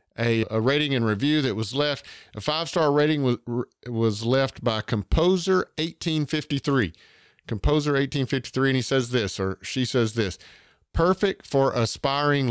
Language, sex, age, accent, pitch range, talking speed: English, male, 50-69, American, 115-140 Hz, 145 wpm